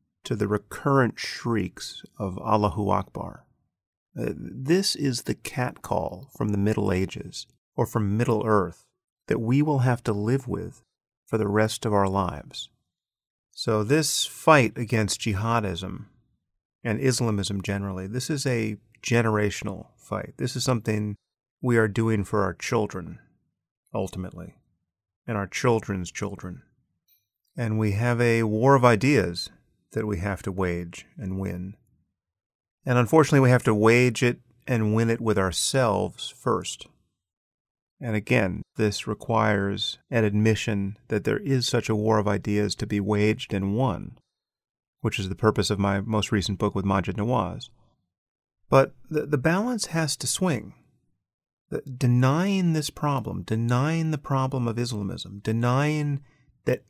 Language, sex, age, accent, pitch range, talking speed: English, male, 40-59, American, 100-125 Hz, 140 wpm